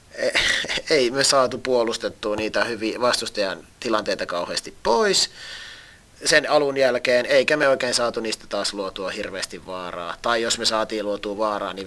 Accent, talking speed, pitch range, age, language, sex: native, 140 wpm, 110-130 Hz, 30-49, Finnish, male